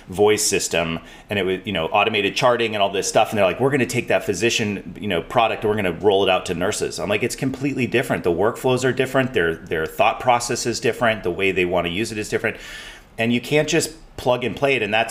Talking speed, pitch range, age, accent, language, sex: 270 wpm, 90-120 Hz, 30-49, American, English, male